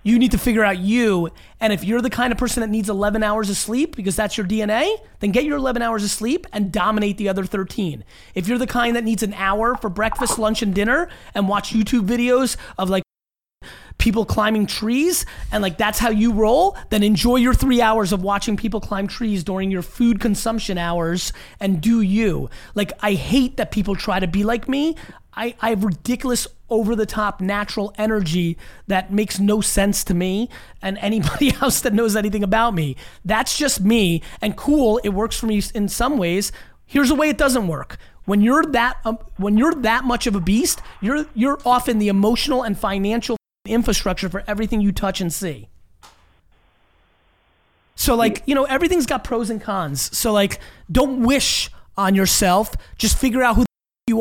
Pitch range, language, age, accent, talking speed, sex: 195-240 Hz, English, 30-49, American, 195 wpm, male